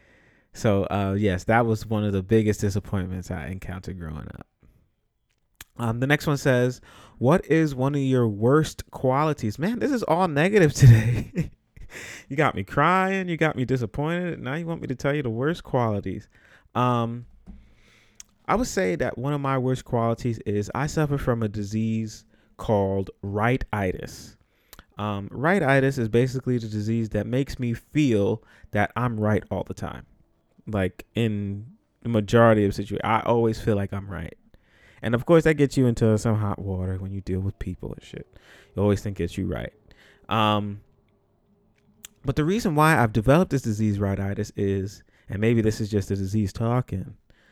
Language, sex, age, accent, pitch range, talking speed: English, male, 30-49, American, 105-135 Hz, 175 wpm